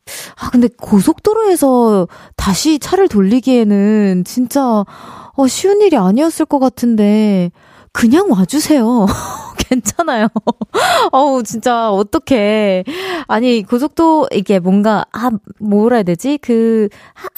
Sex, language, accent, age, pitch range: female, Korean, native, 20-39, 195-275 Hz